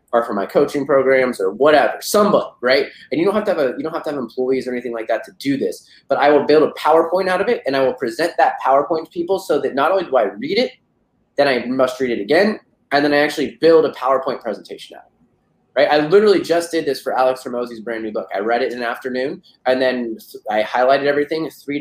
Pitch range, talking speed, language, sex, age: 120-145 Hz, 260 wpm, English, male, 20-39